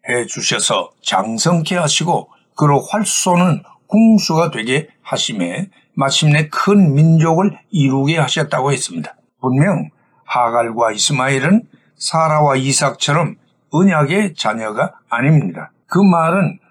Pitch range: 135-180 Hz